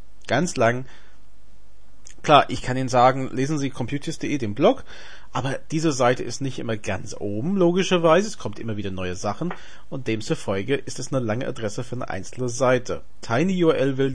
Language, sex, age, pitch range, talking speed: German, male, 40-59, 115-155 Hz, 170 wpm